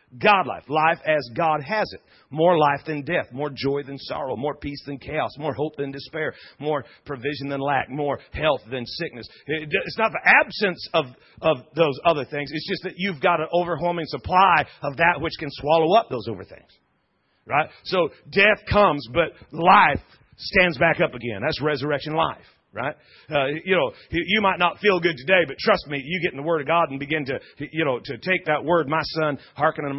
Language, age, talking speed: English, 40-59, 205 wpm